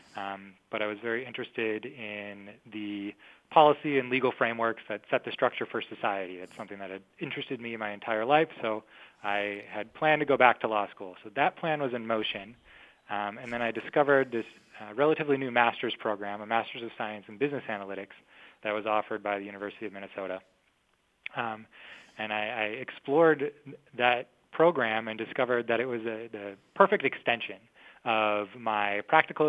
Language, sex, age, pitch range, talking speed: English, male, 20-39, 105-130 Hz, 175 wpm